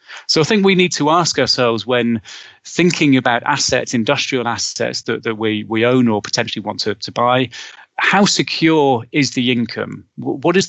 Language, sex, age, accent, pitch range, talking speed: English, male, 30-49, British, 115-145 Hz, 180 wpm